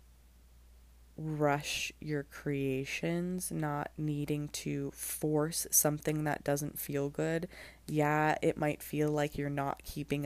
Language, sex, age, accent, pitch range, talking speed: English, female, 20-39, American, 140-155 Hz, 115 wpm